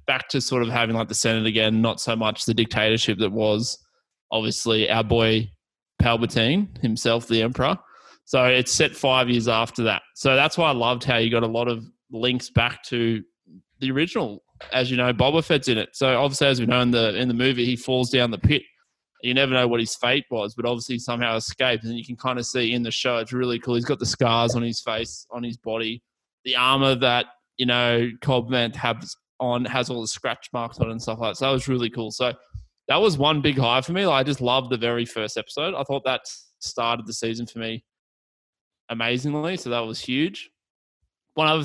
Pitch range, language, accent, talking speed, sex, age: 115-130 Hz, English, Australian, 230 wpm, male, 20-39